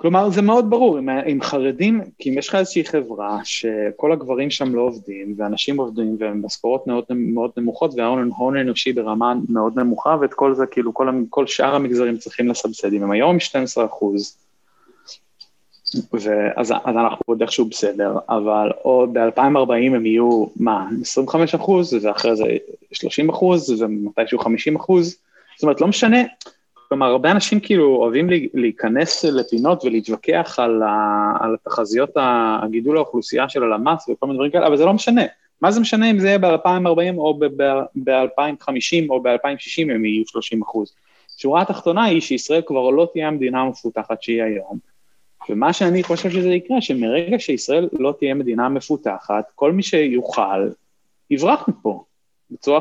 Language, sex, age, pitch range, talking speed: Hebrew, male, 20-39, 115-170 Hz, 155 wpm